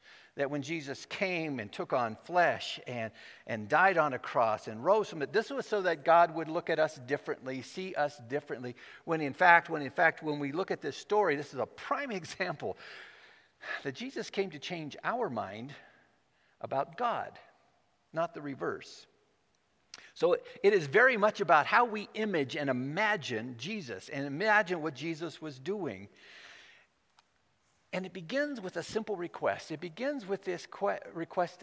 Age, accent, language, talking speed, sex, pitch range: 50-69, American, English, 170 wpm, male, 145-205 Hz